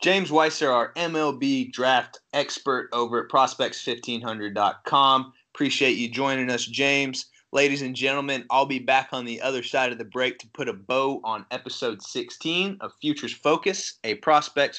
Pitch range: 110-135 Hz